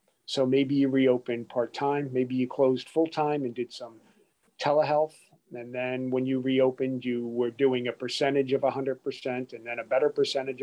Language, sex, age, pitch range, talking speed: English, male, 40-59, 125-140 Hz, 170 wpm